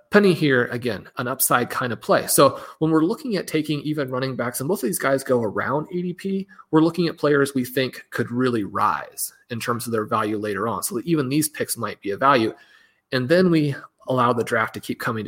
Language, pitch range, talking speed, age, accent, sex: English, 125-160 Hz, 230 wpm, 30-49, American, male